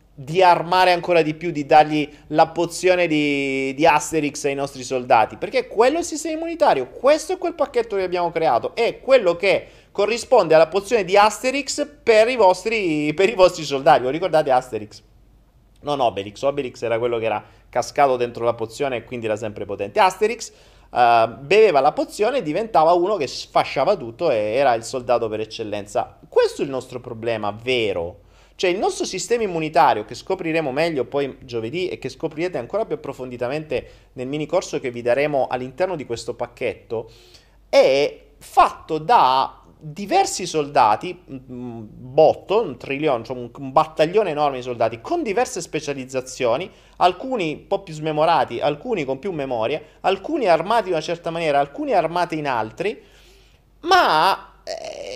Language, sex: Italian, male